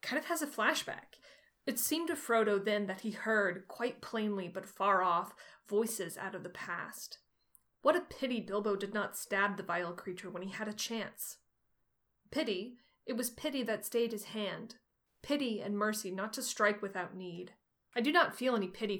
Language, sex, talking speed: English, female, 190 wpm